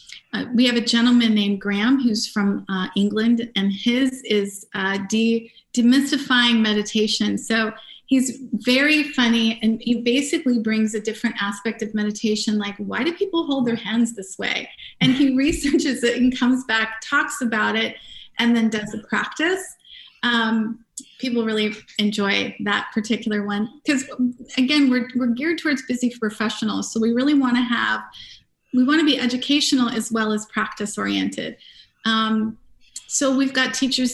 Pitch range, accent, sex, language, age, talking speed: 215-255 Hz, American, female, English, 30-49, 160 wpm